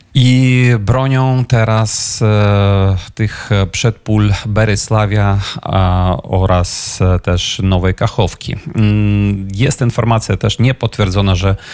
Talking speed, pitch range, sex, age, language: 80 wpm, 95-110 Hz, male, 30-49, Polish